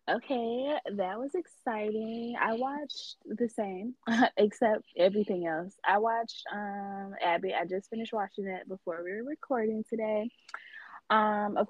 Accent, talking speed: American, 140 wpm